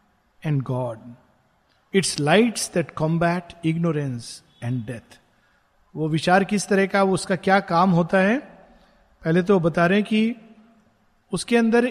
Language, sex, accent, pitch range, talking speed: Hindi, male, native, 160-210 Hz, 65 wpm